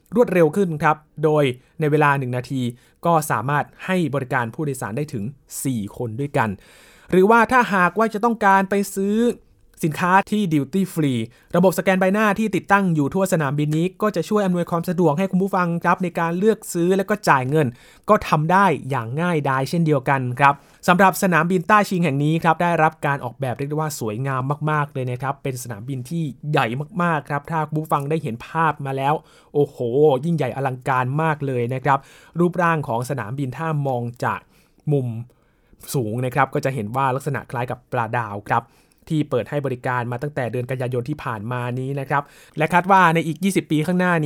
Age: 20-39